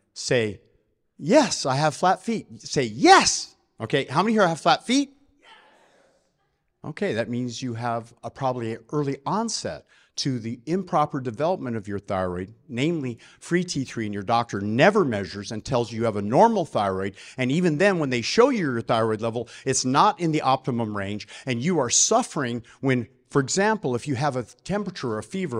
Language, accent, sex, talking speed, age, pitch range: English, American, male, 185 wpm, 50-69, 125-200 Hz